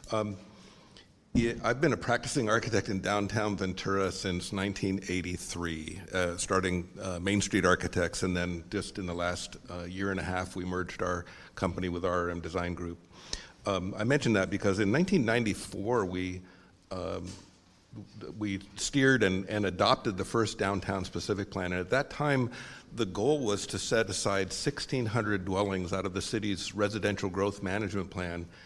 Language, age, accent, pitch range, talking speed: English, 50-69, American, 90-105 Hz, 155 wpm